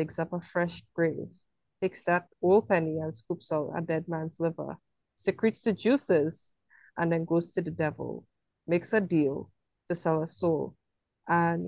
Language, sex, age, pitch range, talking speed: English, female, 30-49, 160-180 Hz, 170 wpm